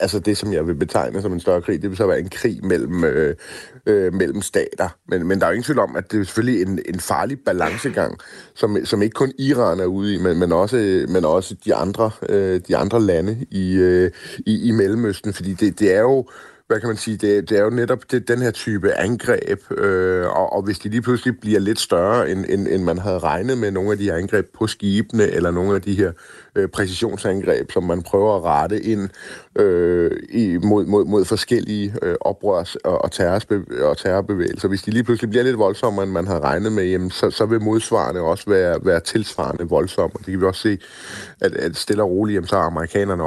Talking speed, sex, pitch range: 225 wpm, male, 95-110 Hz